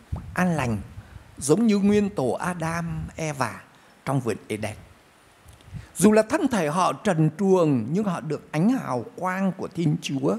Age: 60-79